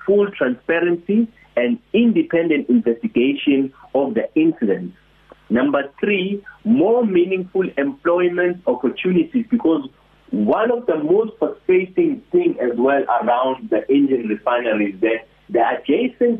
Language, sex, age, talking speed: English, male, 50-69, 115 wpm